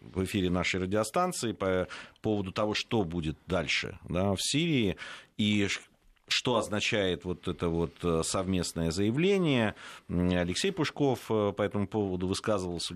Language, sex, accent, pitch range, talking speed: Russian, male, native, 85-105 Hz, 120 wpm